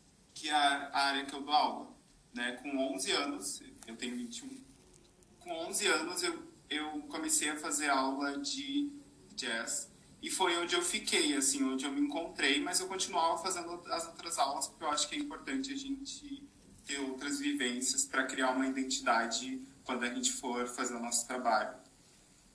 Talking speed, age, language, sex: 175 wpm, 20-39, Portuguese, male